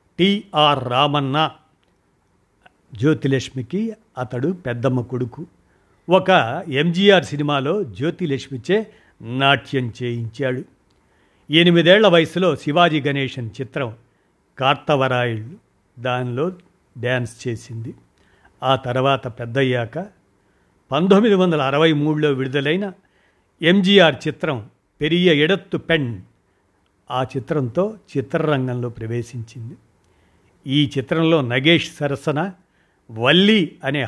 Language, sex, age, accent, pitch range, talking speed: Telugu, male, 60-79, native, 120-160 Hz, 70 wpm